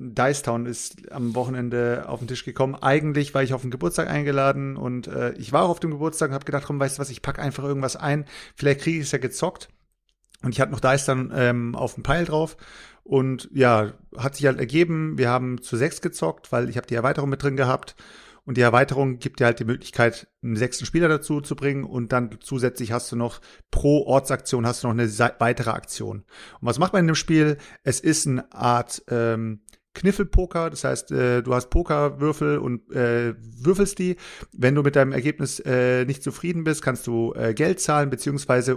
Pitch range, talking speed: 125-155 Hz, 210 wpm